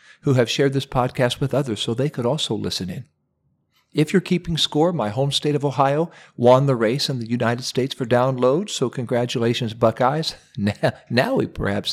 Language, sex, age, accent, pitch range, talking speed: English, male, 50-69, American, 110-145 Hz, 190 wpm